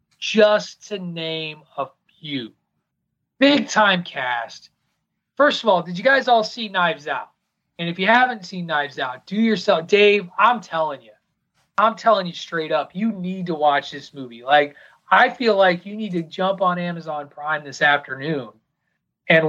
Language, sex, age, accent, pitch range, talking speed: English, male, 30-49, American, 150-190 Hz, 170 wpm